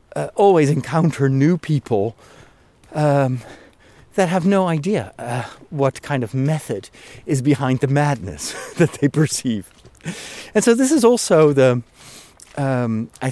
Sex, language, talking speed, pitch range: male, English, 135 wpm, 110-145 Hz